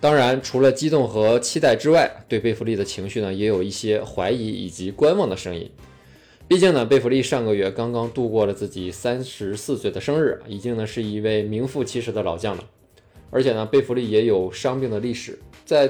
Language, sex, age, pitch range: Chinese, male, 20-39, 95-125 Hz